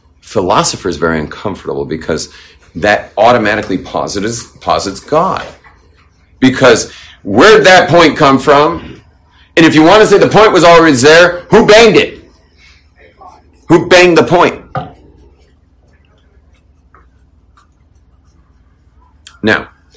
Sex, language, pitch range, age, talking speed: male, English, 80-110 Hz, 40-59, 105 wpm